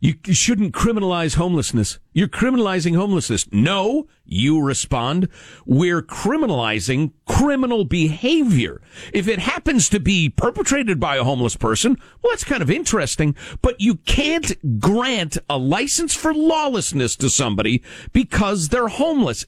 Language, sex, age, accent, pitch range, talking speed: English, male, 50-69, American, 155-245 Hz, 130 wpm